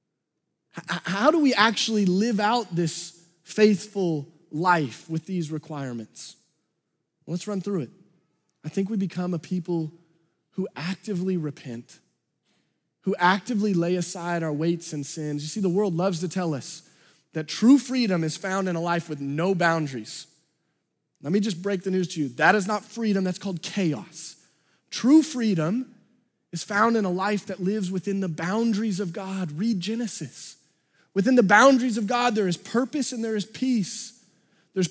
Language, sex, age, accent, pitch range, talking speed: English, male, 30-49, American, 170-225 Hz, 165 wpm